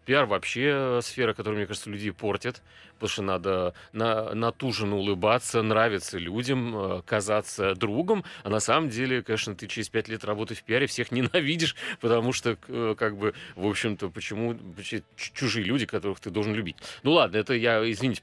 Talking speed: 175 wpm